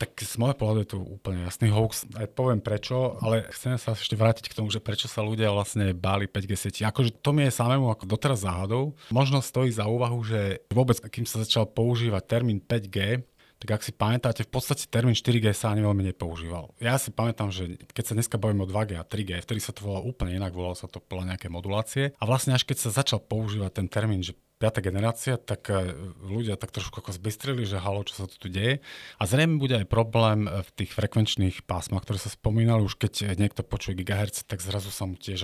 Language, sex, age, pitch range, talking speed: Slovak, male, 40-59, 95-115 Hz, 215 wpm